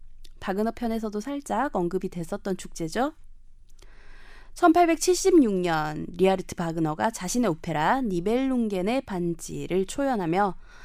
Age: 20-39